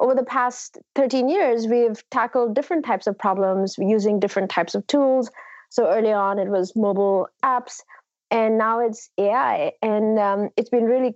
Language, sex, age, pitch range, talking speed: English, female, 30-49, 200-245 Hz, 170 wpm